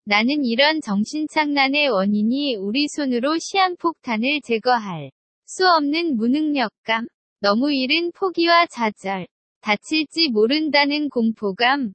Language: Korean